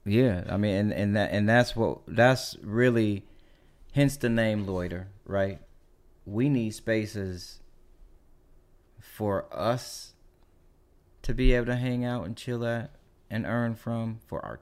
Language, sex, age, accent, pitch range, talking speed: English, male, 30-49, American, 85-115 Hz, 145 wpm